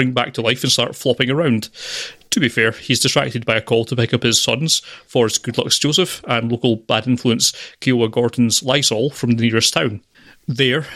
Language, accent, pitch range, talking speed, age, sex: English, British, 115-140 Hz, 190 wpm, 30-49, male